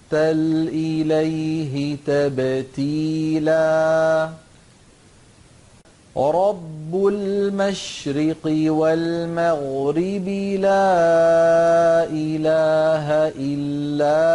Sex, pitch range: male, 145-165 Hz